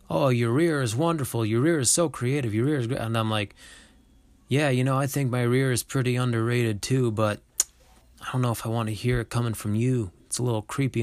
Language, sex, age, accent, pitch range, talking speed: English, male, 20-39, American, 95-115 Hz, 245 wpm